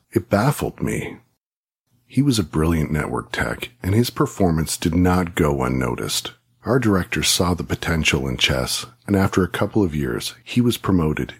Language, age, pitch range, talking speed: English, 40-59, 80-110 Hz, 170 wpm